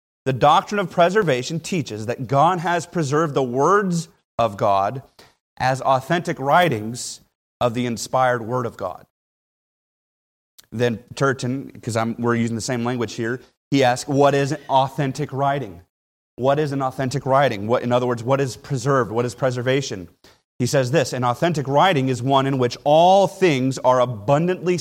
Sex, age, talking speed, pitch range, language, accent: male, 30-49, 160 wpm, 120-145 Hz, English, American